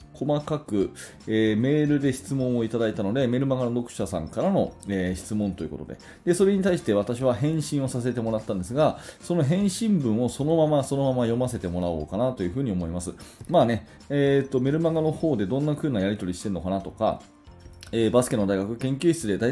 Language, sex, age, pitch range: Japanese, male, 20-39, 100-145 Hz